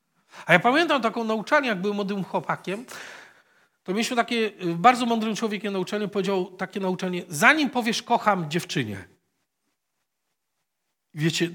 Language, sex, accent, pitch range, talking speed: Polish, male, native, 180-240 Hz, 125 wpm